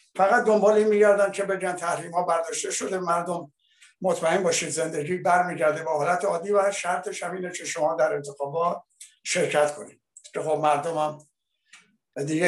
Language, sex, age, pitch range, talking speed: Persian, male, 60-79, 150-180 Hz, 150 wpm